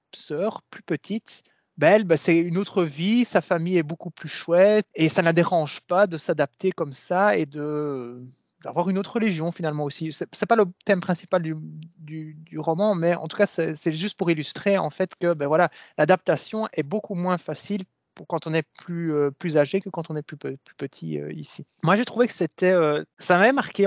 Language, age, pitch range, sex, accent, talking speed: French, 20-39, 155-185 Hz, male, French, 215 wpm